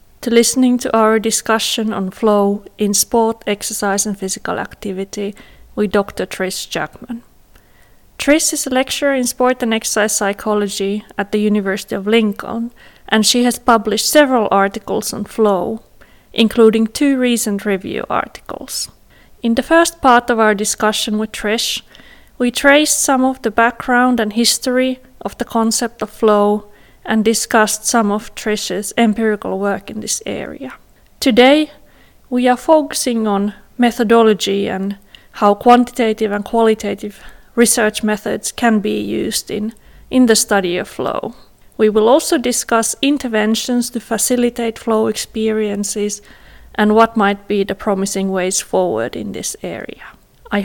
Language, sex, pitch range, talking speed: English, female, 210-245 Hz, 140 wpm